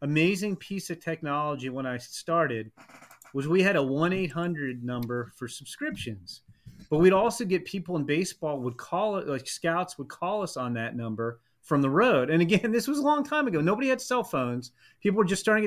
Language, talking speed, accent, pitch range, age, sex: English, 200 wpm, American, 145-185 Hz, 30-49, male